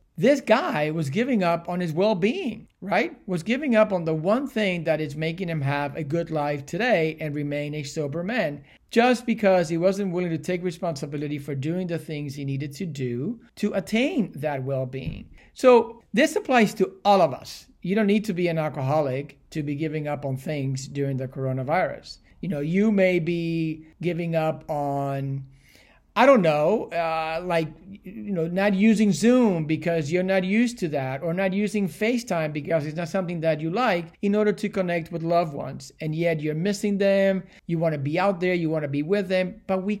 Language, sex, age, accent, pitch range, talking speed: English, male, 50-69, American, 150-200 Hz, 200 wpm